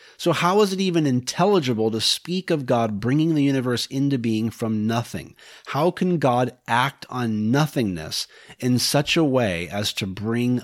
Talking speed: 170 wpm